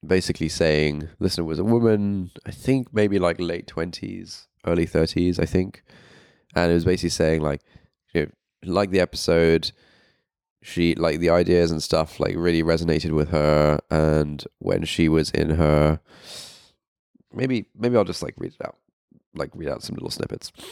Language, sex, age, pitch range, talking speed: English, male, 20-39, 80-95 Hz, 170 wpm